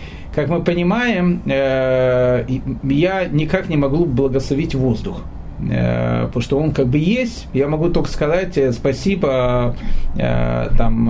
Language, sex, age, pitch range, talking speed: Russian, male, 30-49, 130-175 Hz, 115 wpm